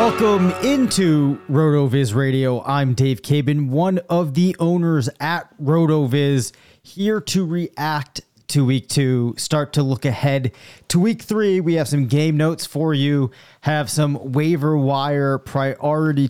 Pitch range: 130-155 Hz